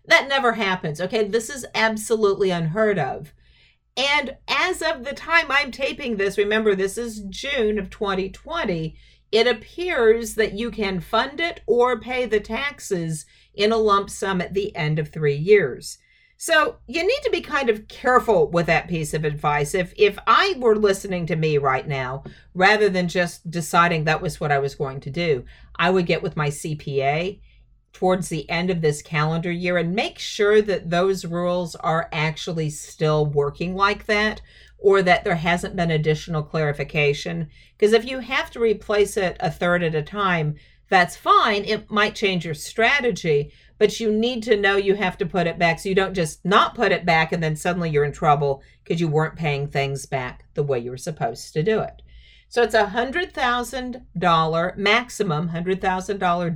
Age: 50-69